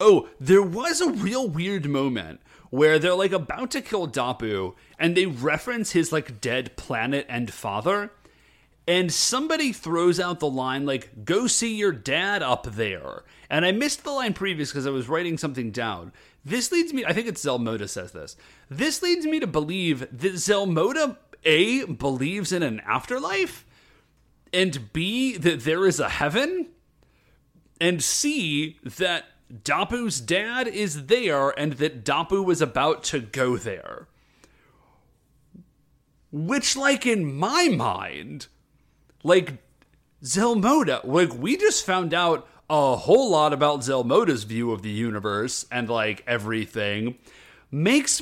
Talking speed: 145 wpm